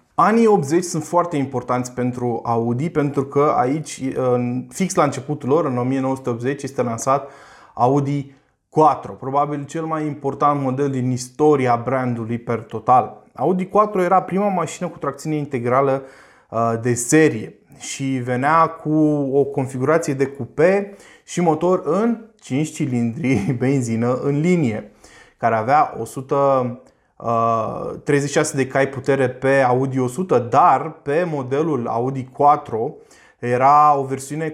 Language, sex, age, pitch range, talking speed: Romanian, male, 20-39, 125-155 Hz, 125 wpm